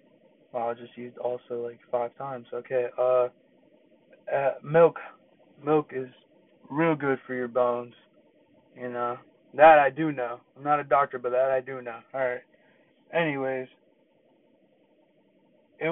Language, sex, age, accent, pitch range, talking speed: English, male, 20-39, American, 125-160 Hz, 145 wpm